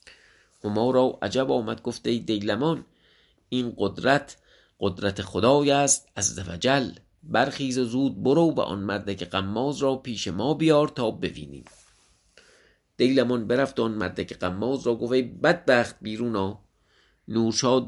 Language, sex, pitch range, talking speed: English, male, 100-145 Hz, 130 wpm